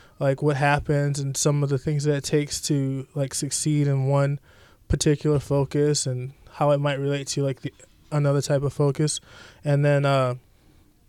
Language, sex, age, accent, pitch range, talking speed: English, male, 20-39, American, 135-165 Hz, 180 wpm